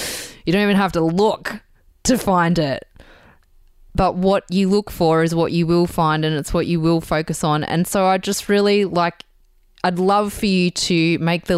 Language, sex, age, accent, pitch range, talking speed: English, female, 20-39, Australian, 155-190 Hz, 200 wpm